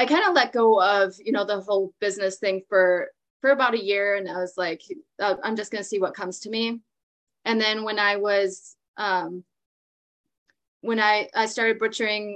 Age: 20-39